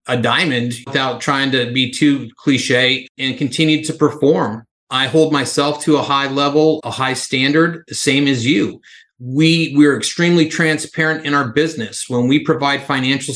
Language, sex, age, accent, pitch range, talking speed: English, male, 30-49, American, 130-155 Hz, 165 wpm